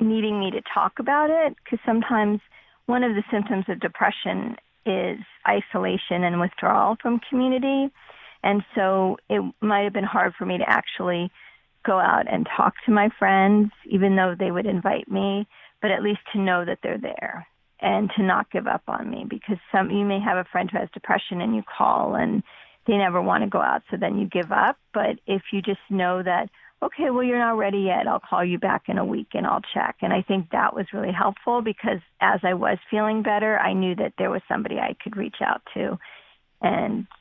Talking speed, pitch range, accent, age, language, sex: 210 wpm, 190-230 Hz, American, 40-59, English, female